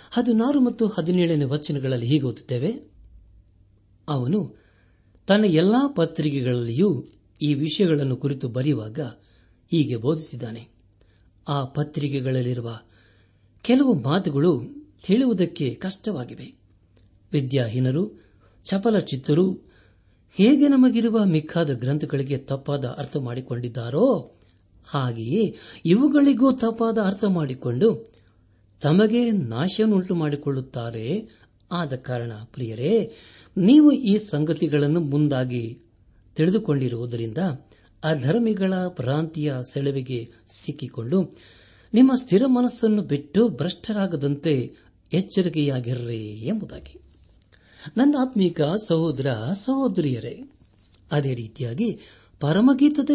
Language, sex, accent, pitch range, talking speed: Kannada, male, native, 120-190 Hz, 75 wpm